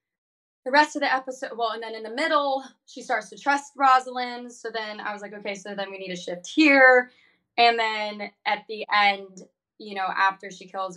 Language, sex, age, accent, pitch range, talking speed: English, female, 20-39, American, 185-225 Hz, 215 wpm